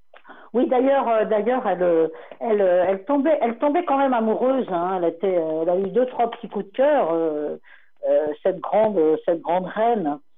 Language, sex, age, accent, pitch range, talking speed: French, female, 60-79, French, 175-250 Hz, 185 wpm